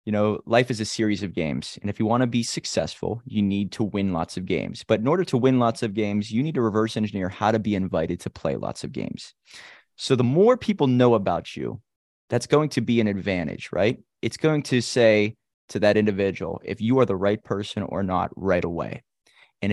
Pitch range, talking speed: 100-125 Hz, 230 wpm